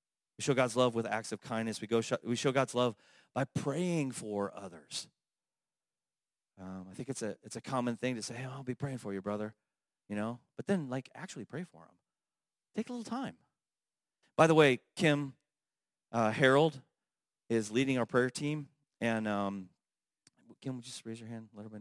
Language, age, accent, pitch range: English, 30-49, American, 100-130 Hz